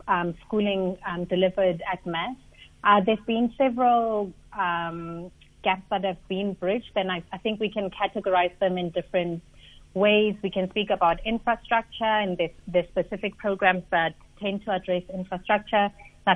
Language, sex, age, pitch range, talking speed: English, female, 30-49, 180-205 Hz, 155 wpm